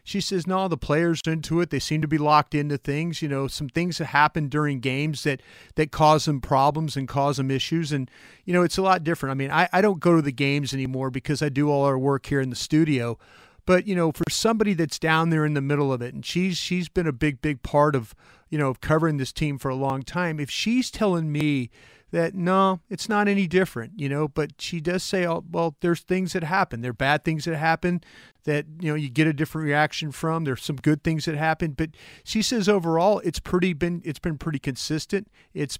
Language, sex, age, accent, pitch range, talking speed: English, male, 40-59, American, 140-165 Hz, 245 wpm